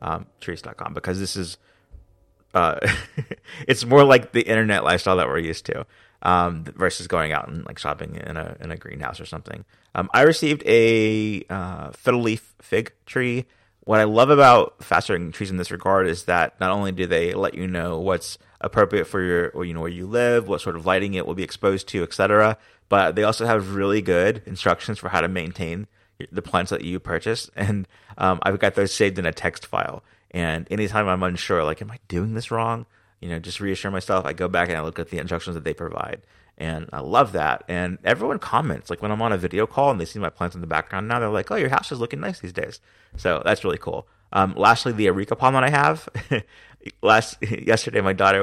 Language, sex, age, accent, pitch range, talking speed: English, male, 30-49, American, 90-110 Hz, 220 wpm